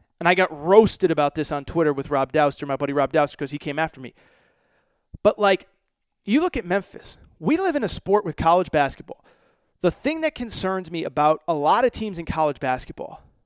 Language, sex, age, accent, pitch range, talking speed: English, male, 30-49, American, 160-235 Hz, 210 wpm